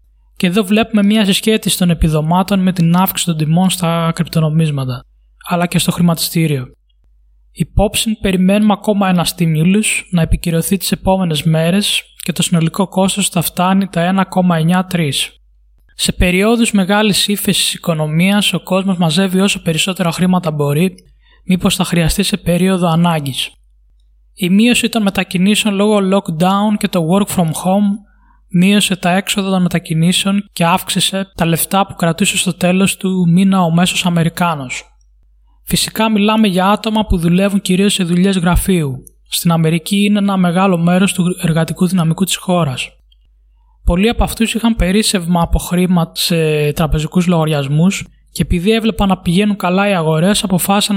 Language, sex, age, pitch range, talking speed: Greek, male, 20-39, 165-195 Hz, 145 wpm